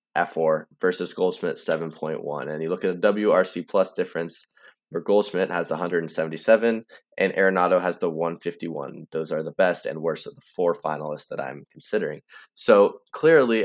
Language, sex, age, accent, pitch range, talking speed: English, male, 20-39, American, 85-115 Hz, 160 wpm